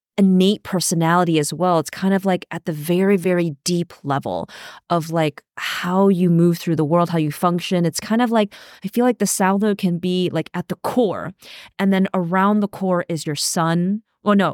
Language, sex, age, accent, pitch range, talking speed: English, female, 20-39, American, 165-205 Hz, 205 wpm